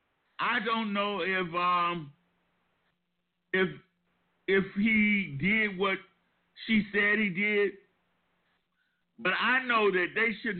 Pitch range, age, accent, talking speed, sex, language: 175-215 Hz, 50-69, American, 115 wpm, male, English